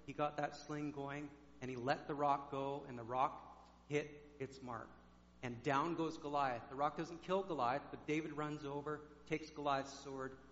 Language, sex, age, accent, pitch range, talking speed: English, male, 50-69, American, 120-150 Hz, 190 wpm